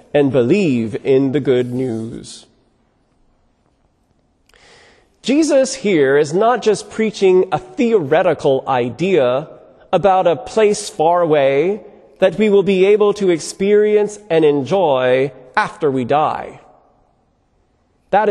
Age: 40-59